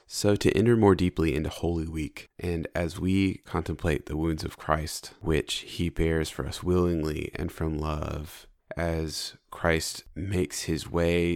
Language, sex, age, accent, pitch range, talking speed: English, male, 30-49, American, 80-90 Hz, 160 wpm